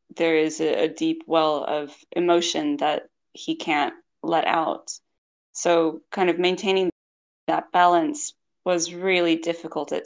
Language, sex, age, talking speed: English, female, 20-39, 130 wpm